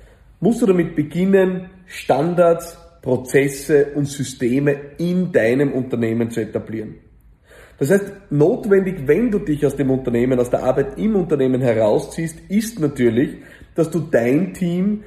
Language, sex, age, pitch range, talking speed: German, male, 40-59, 140-185 Hz, 135 wpm